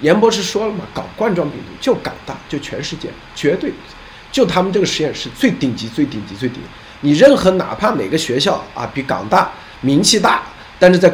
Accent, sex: native, male